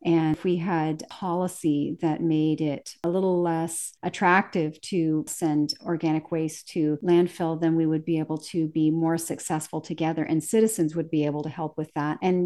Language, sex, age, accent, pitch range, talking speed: English, female, 40-59, American, 155-180 Hz, 185 wpm